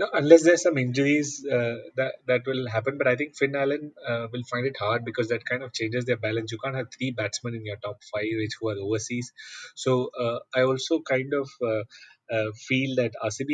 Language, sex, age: English, male, 30-49